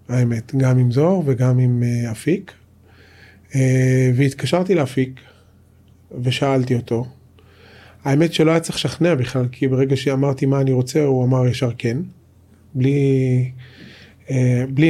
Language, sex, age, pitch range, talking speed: Hebrew, male, 30-49, 115-135 Hz, 115 wpm